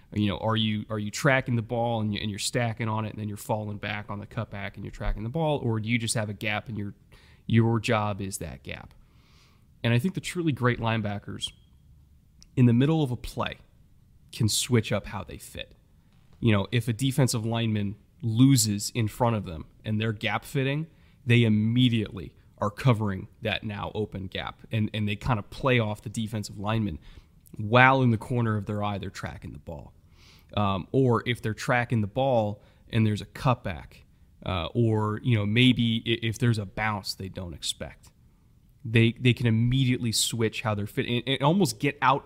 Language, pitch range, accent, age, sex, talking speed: English, 105-125 Hz, American, 30-49, male, 200 wpm